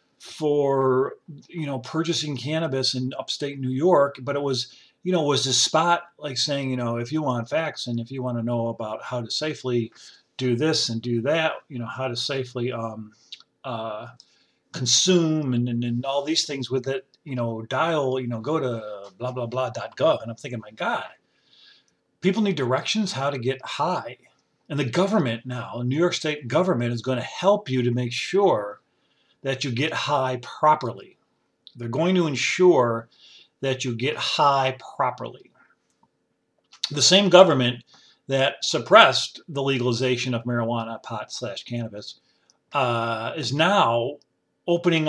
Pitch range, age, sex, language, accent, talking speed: 120-155 Hz, 40-59, male, English, American, 165 wpm